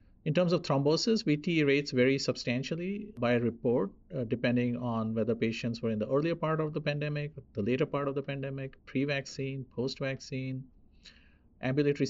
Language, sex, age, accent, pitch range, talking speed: English, male, 50-69, Indian, 115-145 Hz, 160 wpm